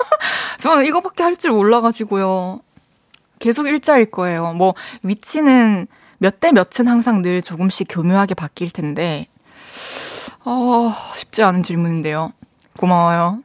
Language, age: Korean, 20-39